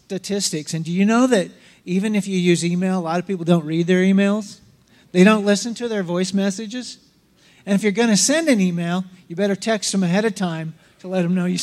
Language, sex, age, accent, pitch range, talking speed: English, male, 50-69, American, 170-210 Hz, 235 wpm